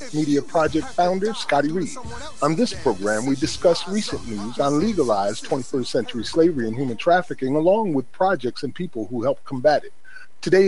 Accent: American